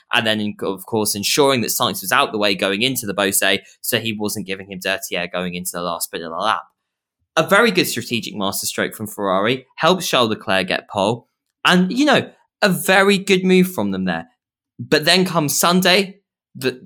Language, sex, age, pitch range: English, male, 10-29, 100-145 Hz